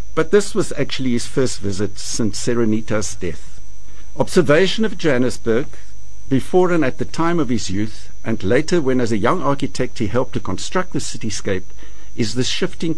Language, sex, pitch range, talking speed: English, male, 105-150 Hz, 170 wpm